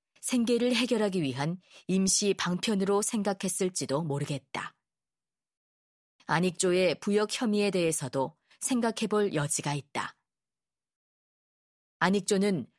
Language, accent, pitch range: Korean, native, 160-210 Hz